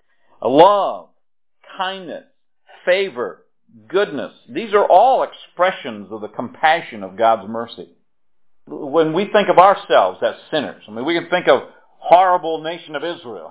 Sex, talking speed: male, 140 wpm